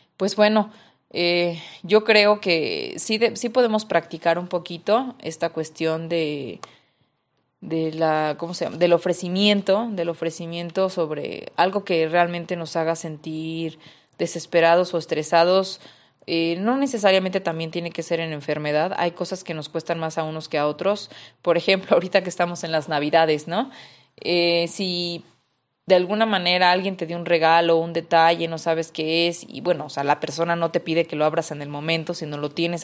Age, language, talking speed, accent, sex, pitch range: 20-39, Spanish, 180 wpm, Mexican, female, 165-185 Hz